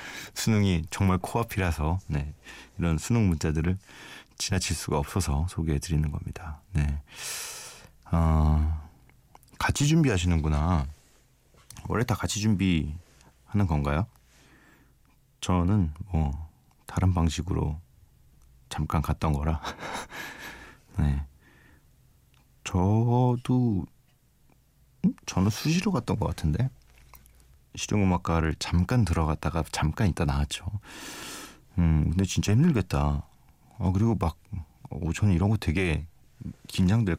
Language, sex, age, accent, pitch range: Korean, male, 40-59, native, 80-100 Hz